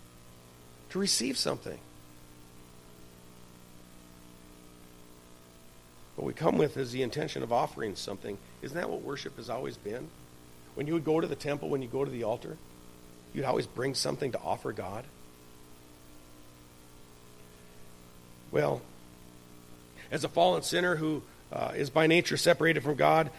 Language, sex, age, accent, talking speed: English, male, 50-69, American, 135 wpm